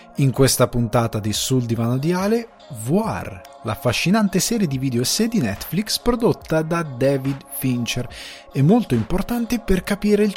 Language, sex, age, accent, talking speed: Italian, male, 30-49, native, 150 wpm